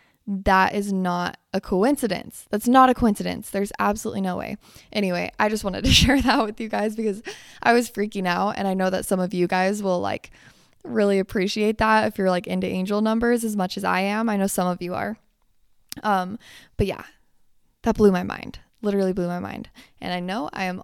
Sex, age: female, 20-39